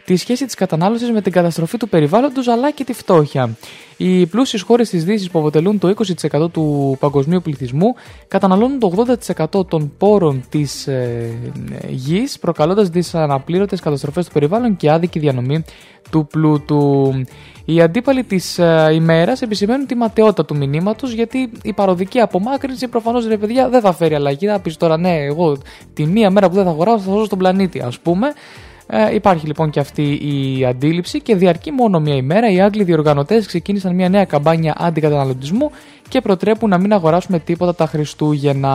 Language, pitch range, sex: Greek, 150-210 Hz, male